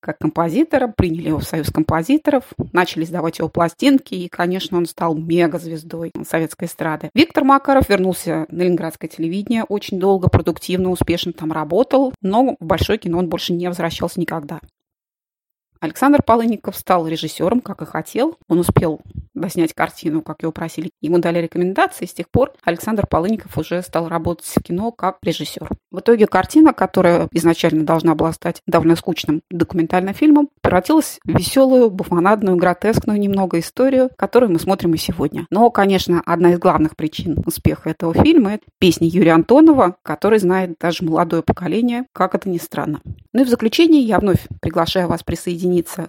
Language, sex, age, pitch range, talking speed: Russian, female, 20-39, 165-210 Hz, 165 wpm